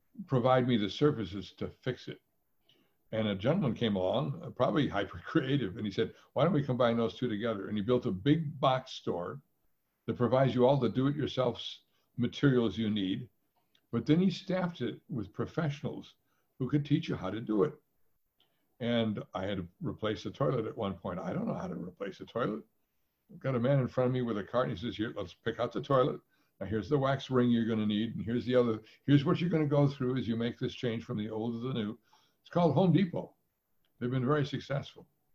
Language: English